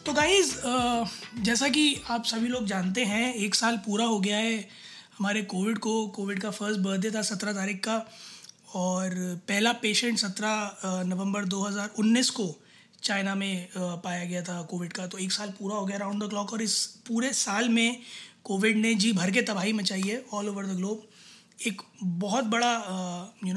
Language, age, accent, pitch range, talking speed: Hindi, 20-39, native, 200-230 Hz, 180 wpm